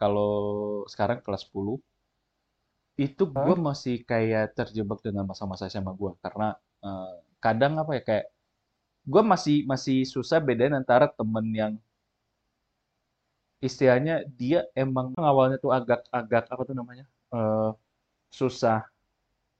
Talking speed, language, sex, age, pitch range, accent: 115 wpm, Indonesian, male, 20-39, 105-130 Hz, native